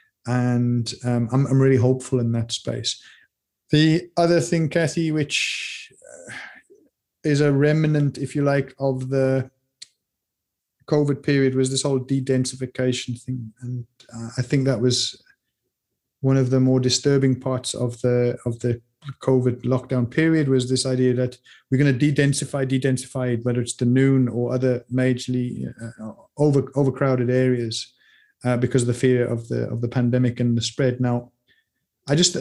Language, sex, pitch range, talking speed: English, male, 120-135 Hz, 155 wpm